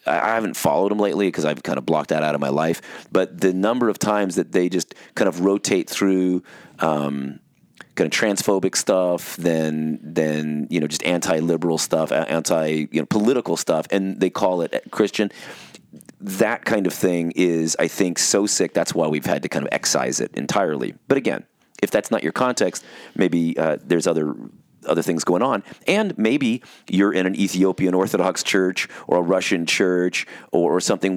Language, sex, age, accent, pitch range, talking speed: English, male, 30-49, American, 85-100 Hz, 190 wpm